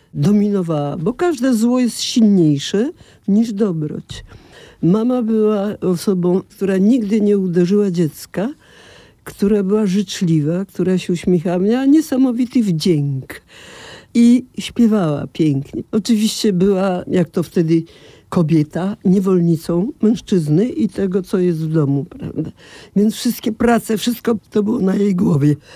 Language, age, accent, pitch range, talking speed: Polish, 50-69, native, 165-220 Hz, 120 wpm